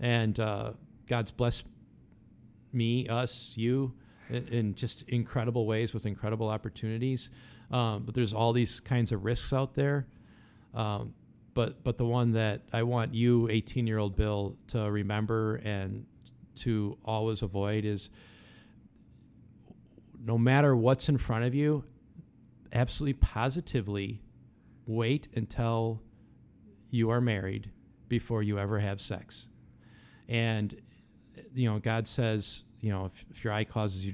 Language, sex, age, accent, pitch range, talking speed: English, male, 50-69, American, 105-120 Hz, 130 wpm